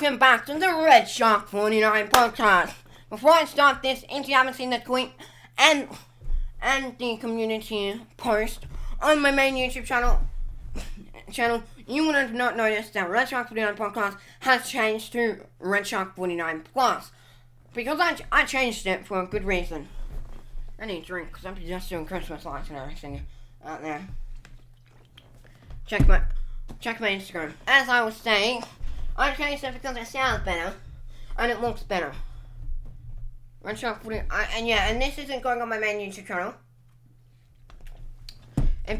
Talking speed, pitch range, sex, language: 160 wpm, 155-245 Hz, female, English